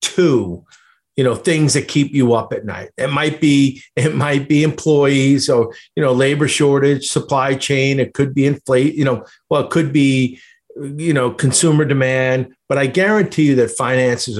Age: 40-59